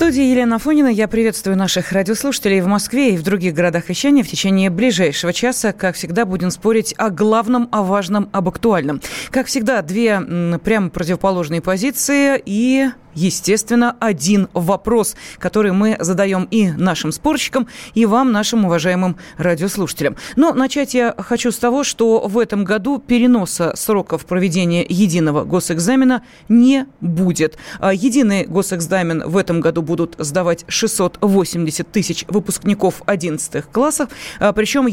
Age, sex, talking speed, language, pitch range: 30-49, female, 135 wpm, Russian, 185-245 Hz